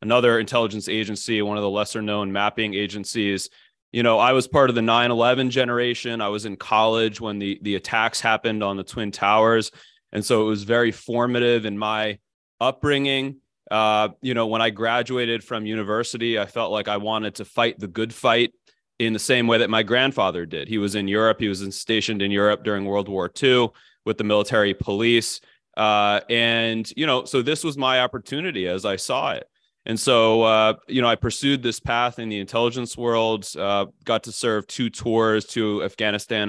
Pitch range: 105-120 Hz